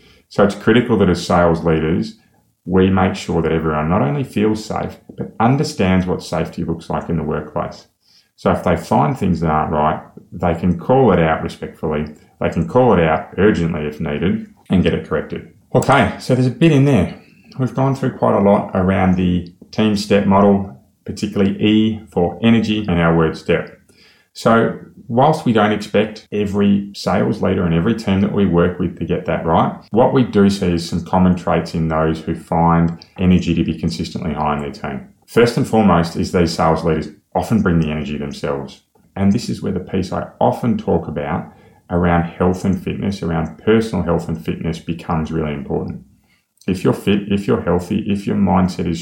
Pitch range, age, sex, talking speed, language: 85-105 Hz, 30-49, male, 195 wpm, English